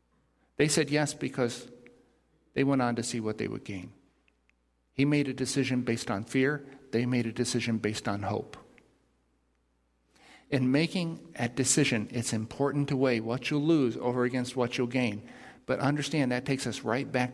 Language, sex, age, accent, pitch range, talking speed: English, male, 50-69, American, 115-145 Hz, 175 wpm